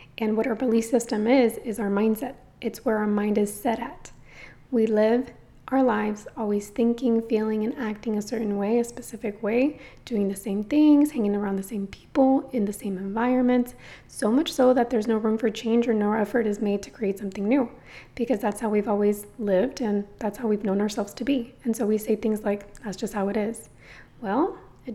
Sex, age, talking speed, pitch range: female, 20-39, 215 wpm, 210-250 Hz